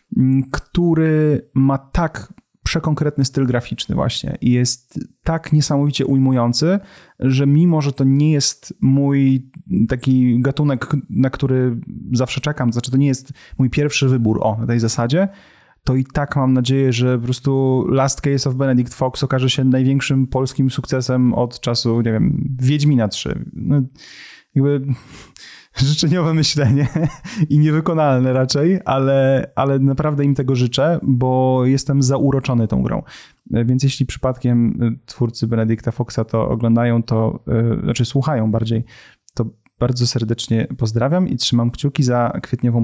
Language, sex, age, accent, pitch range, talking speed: Polish, male, 30-49, native, 120-140 Hz, 135 wpm